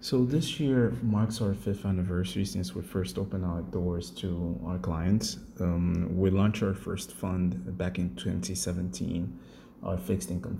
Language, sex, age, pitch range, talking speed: English, male, 30-49, 90-95 Hz, 165 wpm